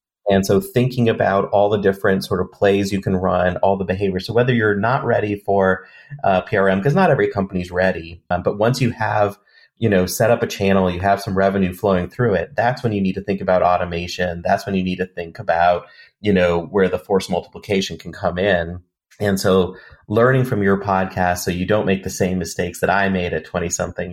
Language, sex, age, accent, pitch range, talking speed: English, male, 30-49, American, 90-100 Hz, 220 wpm